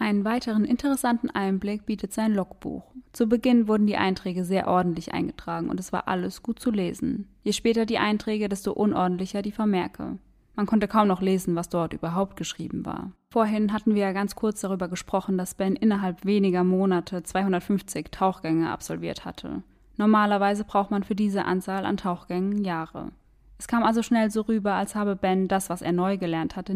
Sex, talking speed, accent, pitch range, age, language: female, 180 wpm, German, 185-220 Hz, 20-39, German